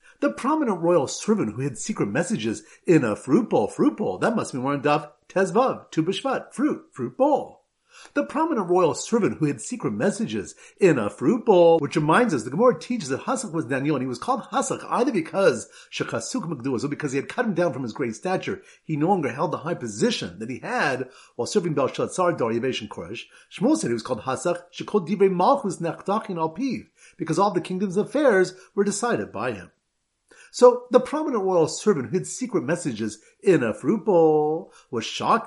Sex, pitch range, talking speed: male, 155-230 Hz, 200 wpm